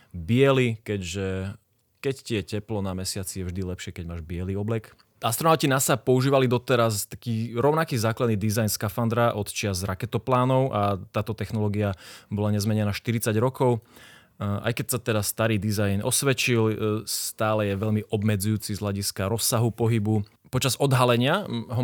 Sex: male